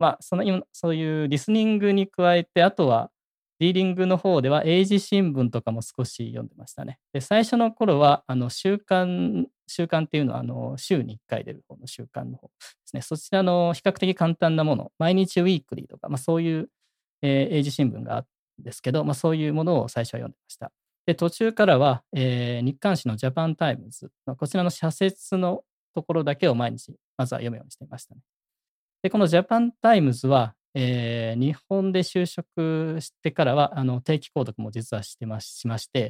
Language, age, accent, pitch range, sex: Japanese, 20-39, native, 125-175 Hz, male